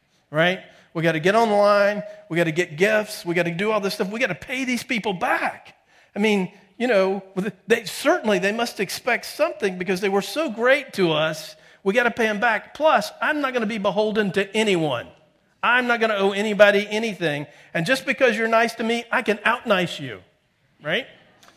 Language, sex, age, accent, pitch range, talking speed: English, male, 50-69, American, 165-220 Hz, 210 wpm